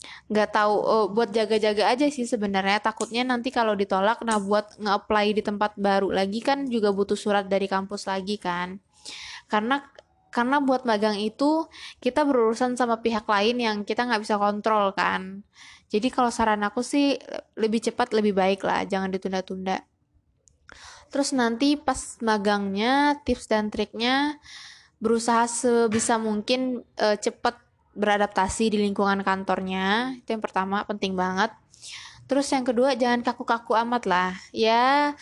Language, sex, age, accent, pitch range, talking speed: Indonesian, female, 20-39, native, 200-245 Hz, 140 wpm